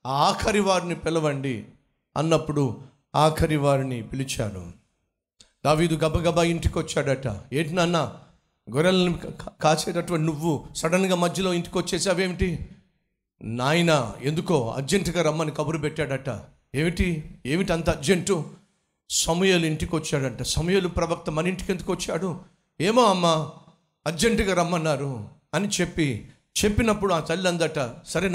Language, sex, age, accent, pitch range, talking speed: Telugu, male, 50-69, native, 135-170 Hz, 95 wpm